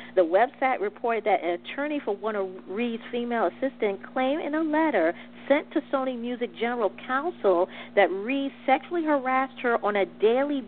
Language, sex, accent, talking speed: English, female, American, 170 wpm